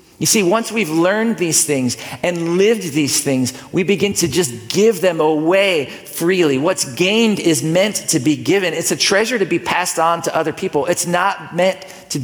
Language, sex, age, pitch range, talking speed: English, male, 50-69, 140-185 Hz, 195 wpm